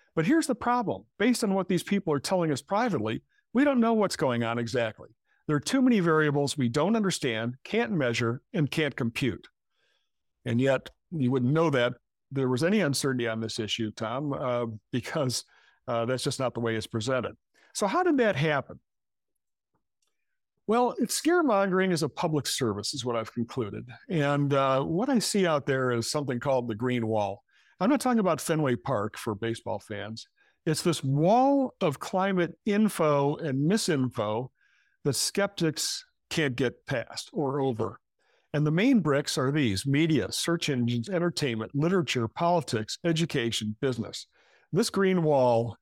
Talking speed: 165 wpm